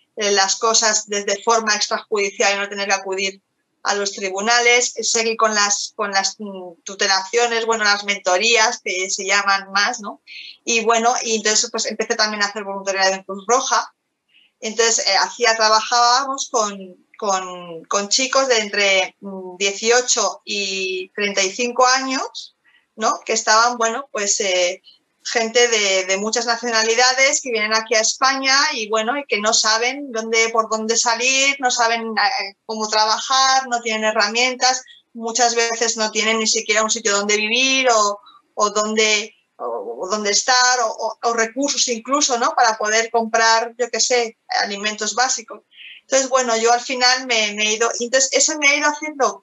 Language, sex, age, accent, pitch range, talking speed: Spanish, female, 20-39, Spanish, 205-250 Hz, 165 wpm